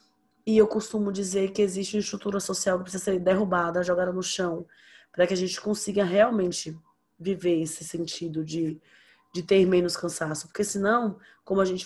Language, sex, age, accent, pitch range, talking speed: Portuguese, female, 20-39, Brazilian, 175-220 Hz, 175 wpm